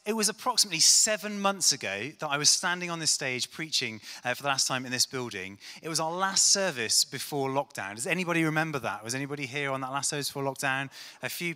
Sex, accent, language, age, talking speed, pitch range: male, British, English, 30-49, 230 wpm, 130-175 Hz